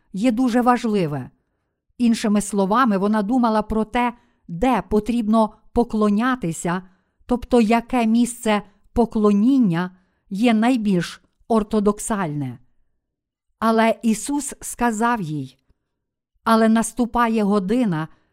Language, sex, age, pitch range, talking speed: Ukrainian, female, 50-69, 195-240 Hz, 85 wpm